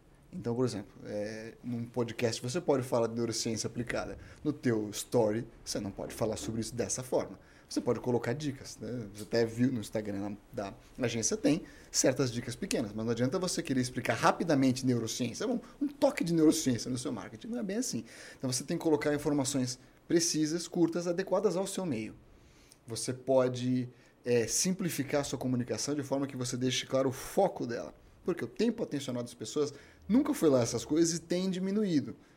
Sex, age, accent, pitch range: male, 30-49, Brazilian, 120-155 Hz